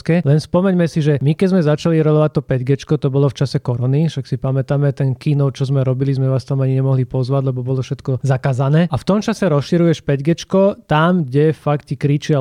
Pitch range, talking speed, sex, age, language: 135-155 Hz, 215 wpm, male, 30-49, Slovak